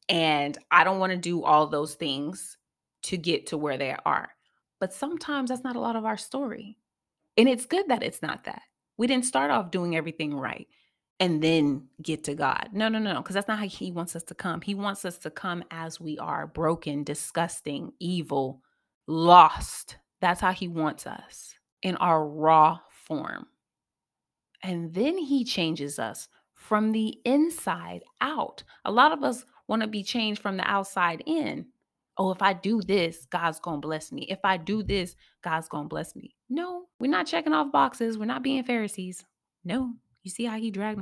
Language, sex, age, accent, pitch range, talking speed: English, female, 30-49, American, 160-220 Hz, 195 wpm